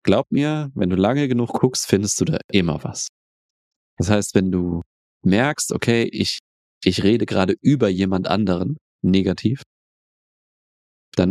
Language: German